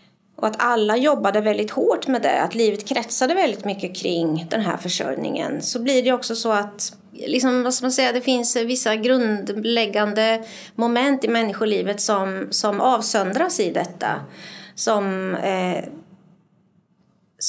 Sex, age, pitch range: female, 30-49, 190-240 Hz